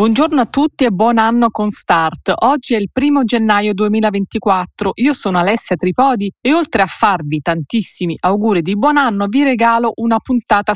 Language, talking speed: Italian, 175 wpm